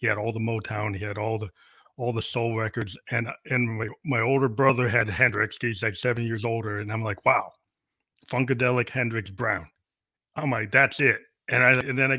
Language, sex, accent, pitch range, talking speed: English, male, American, 110-130 Hz, 205 wpm